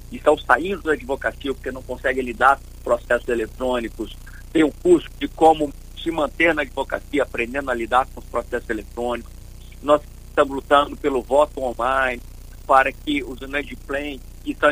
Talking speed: 165 wpm